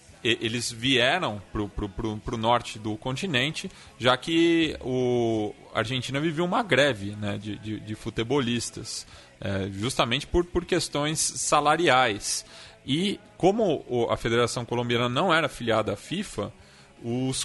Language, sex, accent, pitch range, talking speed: Portuguese, male, Brazilian, 110-150 Hz, 120 wpm